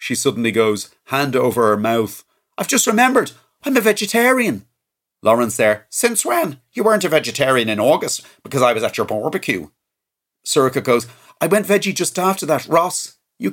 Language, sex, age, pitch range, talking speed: English, male, 40-59, 115-150 Hz, 175 wpm